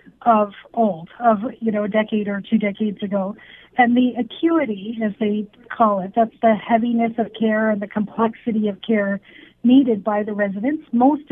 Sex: female